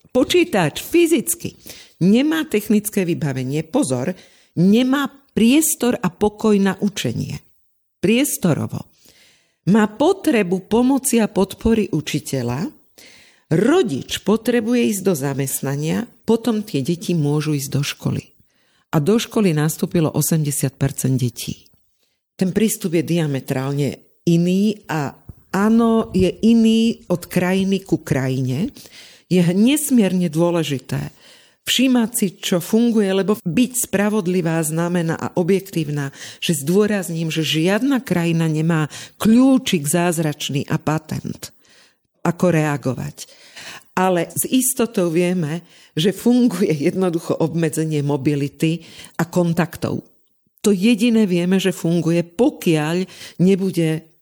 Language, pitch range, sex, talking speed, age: Slovak, 155-215 Hz, female, 105 wpm, 50-69